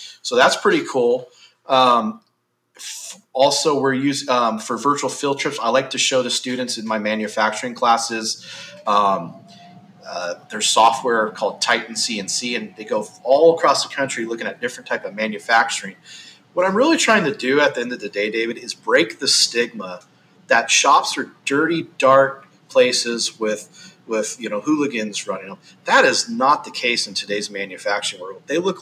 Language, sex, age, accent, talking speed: English, male, 30-49, American, 175 wpm